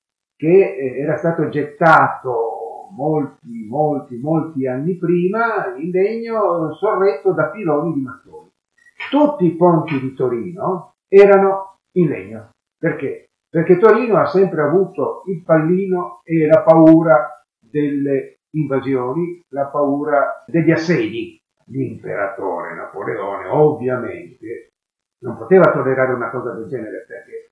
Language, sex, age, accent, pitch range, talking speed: Italian, male, 50-69, native, 130-195 Hz, 115 wpm